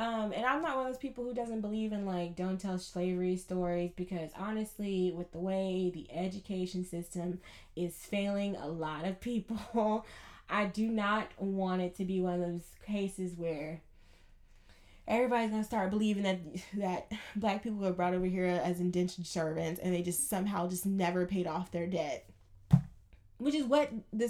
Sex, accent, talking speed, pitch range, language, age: female, American, 180 wpm, 180-225 Hz, English, 10-29